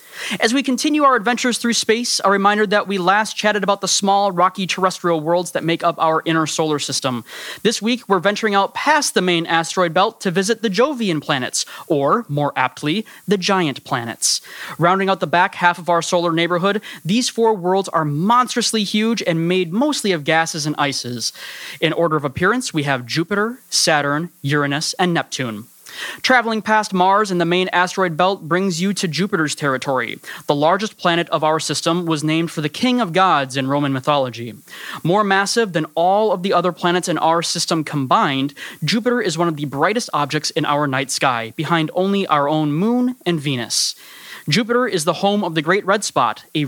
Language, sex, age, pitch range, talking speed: English, male, 20-39, 155-205 Hz, 190 wpm